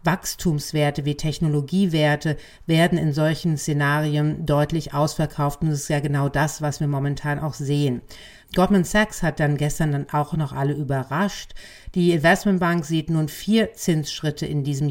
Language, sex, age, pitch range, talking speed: German, female, 40-59, 155-240 Hz, 155 wpm